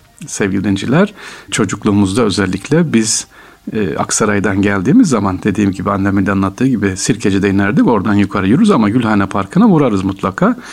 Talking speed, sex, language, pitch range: 145 wpm, male, Turkish, 100-125 Hz